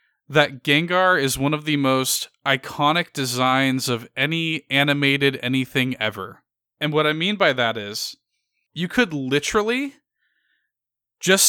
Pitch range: 130-160 Hz